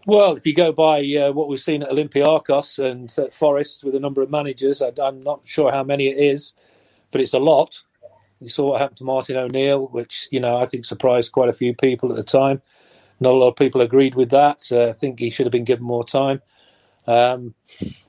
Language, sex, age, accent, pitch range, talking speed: English, male, 40-59, British, 125-145 Hz, 230 wpm